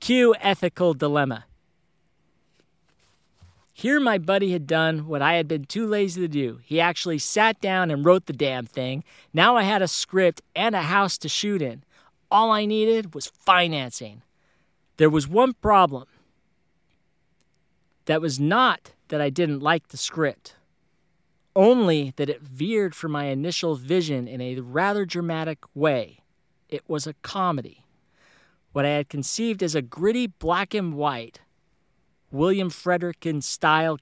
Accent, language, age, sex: American, English, 40-59, male